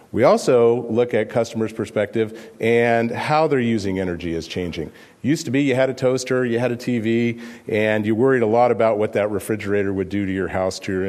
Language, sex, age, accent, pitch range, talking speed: English, male, 40-59, American, 105-130 Hz, 215 wpm